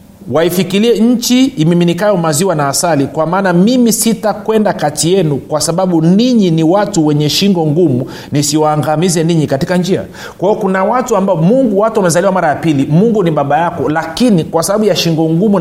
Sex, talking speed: male, 170 wpm